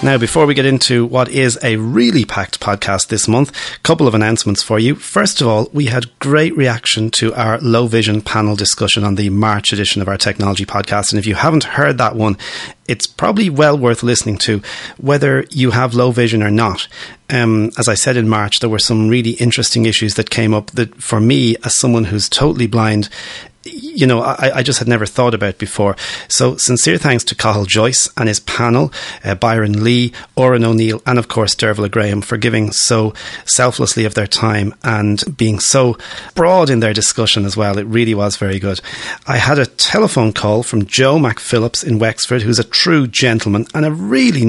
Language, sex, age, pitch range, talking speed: English, male, 30-49, 105-125 Hz, 200 wpm